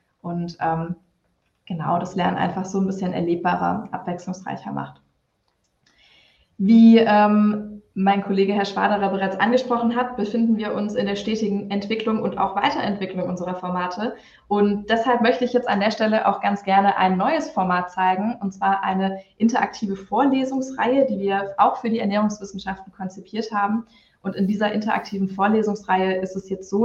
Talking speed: 155 wpm